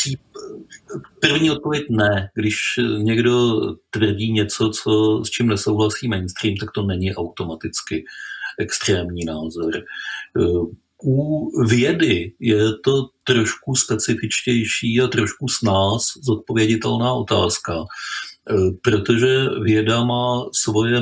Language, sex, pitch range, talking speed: Czech, male, 105-120 Hz, 95 wpm